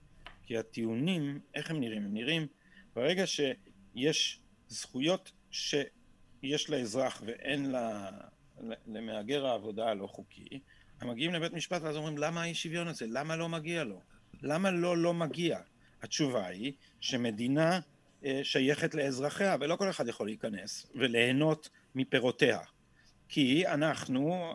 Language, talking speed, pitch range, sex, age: Hebrew, 120 wpm, 130-175 Hz, male, 50-69